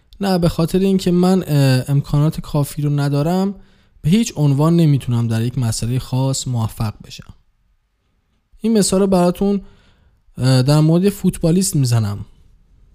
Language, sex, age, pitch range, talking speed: Persian, male, 20-39, 120-175 Hz, 125 wpm